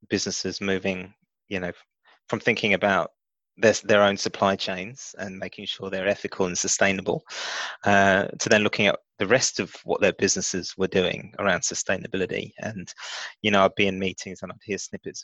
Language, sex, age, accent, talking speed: English, male, 20-39, British, 175 wpm